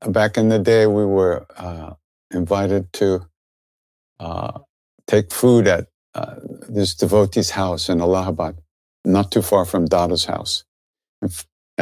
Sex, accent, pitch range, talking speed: male, American, 85-105 Hz, 130 wpm